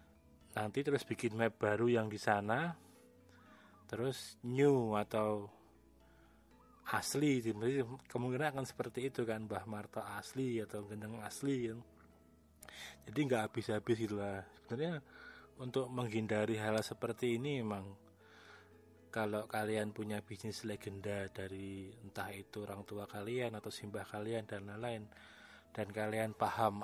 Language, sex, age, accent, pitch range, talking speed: Indonesian, male, 20-39, native, 105-120 Hz, 120 wpm